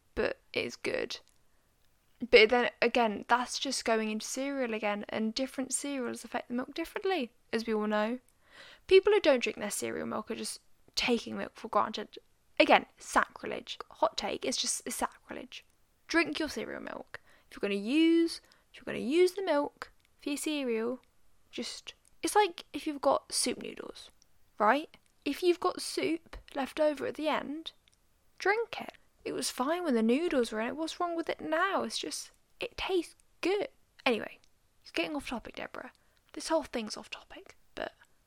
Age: 10-29